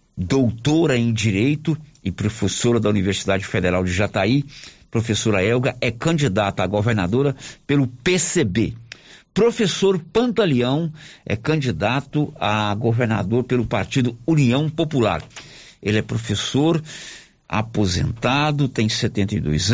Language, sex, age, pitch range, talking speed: Portuguese, male, 60-79, 110-145 Hz, 105 wpm